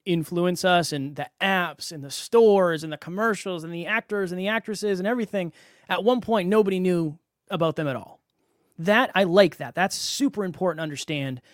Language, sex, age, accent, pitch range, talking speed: English, male, 20-39, American, 155-195 Hz, 190 wpm